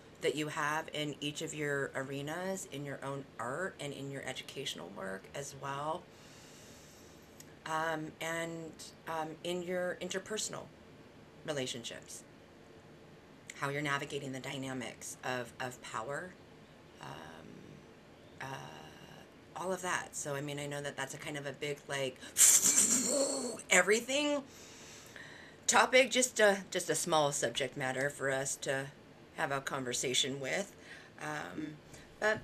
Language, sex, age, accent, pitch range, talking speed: English, female, 30-49, American, 135-165 Hz, 130 wpm